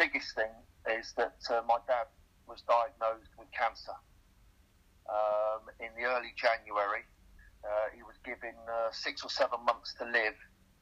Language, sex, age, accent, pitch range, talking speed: English, male, 40-59, British, 95-125 Hz, 150 wpm